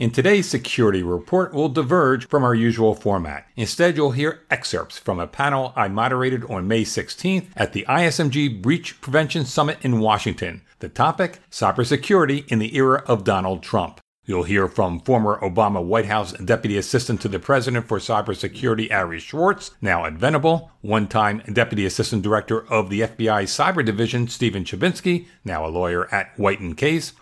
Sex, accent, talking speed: male, American, 170 wpm